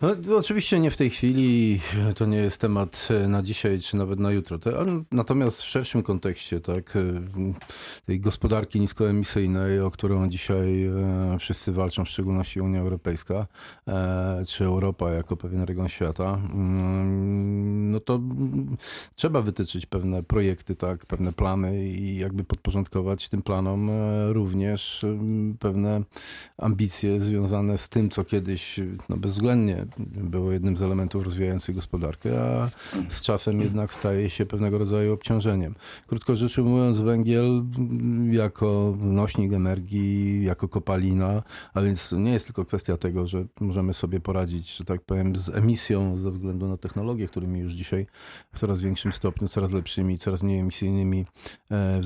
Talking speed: 140 wpm